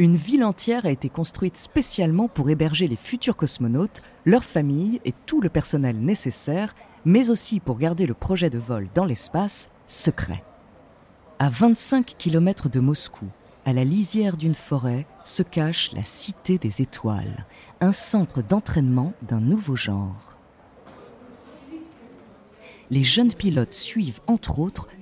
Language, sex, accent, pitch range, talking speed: French, female, French, 130-205 Hz, 140 wpm